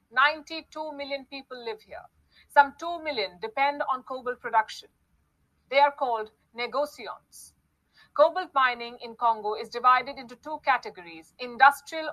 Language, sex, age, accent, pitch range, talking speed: English, female, 50-69, Indian, 235-285 Hz, 130 wpm